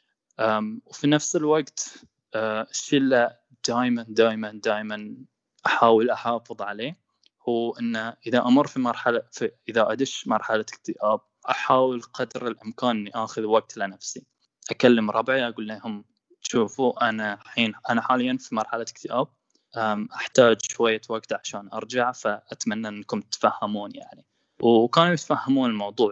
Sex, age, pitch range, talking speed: male, 10-29, 110-130 Hz, 125 wpm